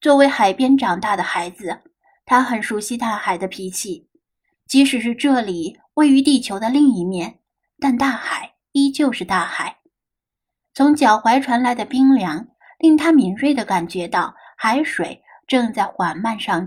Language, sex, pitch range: Chinese, female, 205-275 Hz